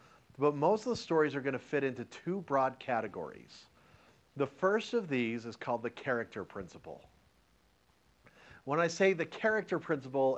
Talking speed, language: 155 wpm, English